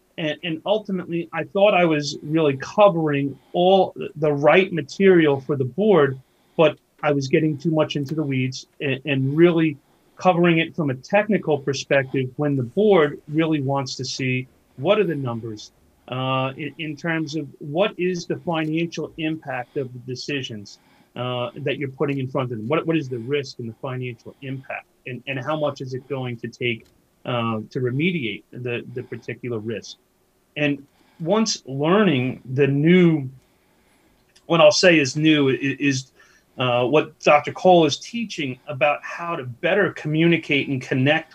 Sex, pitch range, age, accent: male, 130-160 Hz, 40-59, American